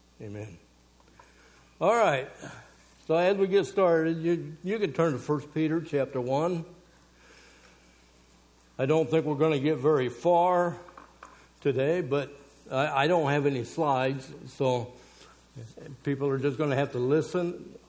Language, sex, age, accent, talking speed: English, male, 60-79, American, 145 wpm